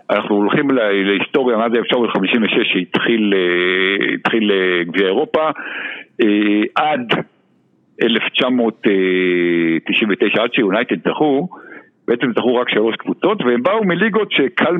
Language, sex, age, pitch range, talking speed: Hebrew, male, 60-79, 95-140 Hz, 100 wpm